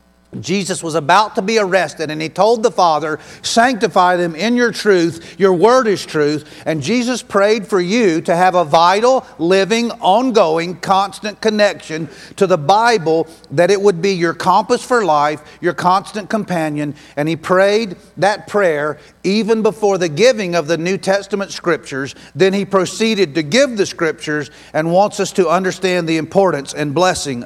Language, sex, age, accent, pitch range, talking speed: English, male, 40-59, American, 150-200 Hz, 170 wpm